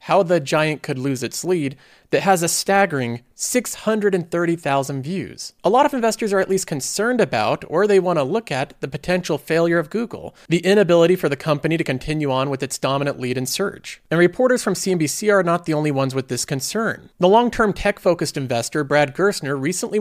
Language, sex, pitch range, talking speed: English, male, 145-200 Hz, 195 wpm